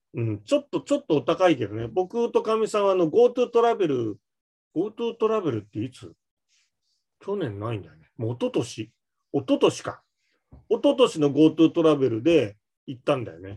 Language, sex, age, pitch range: Japanese, male, 40-59, 125-200 Hz